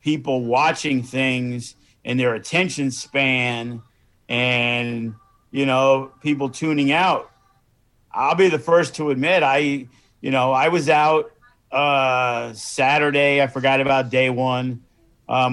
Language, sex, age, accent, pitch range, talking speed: English, male, 50-69, American, 125-150 Hz, 130 wpm